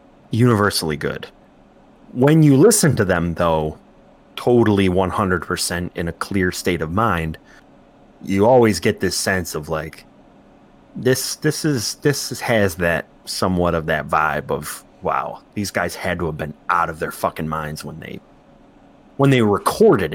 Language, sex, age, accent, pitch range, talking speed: English, male, 30-49, American, 85-120 Hz, 155 wpm